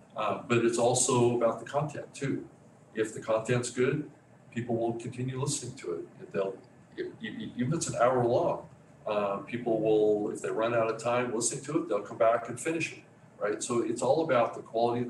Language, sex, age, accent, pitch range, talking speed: English, male, 50-69, American, 115-135 Hz, 210 wpm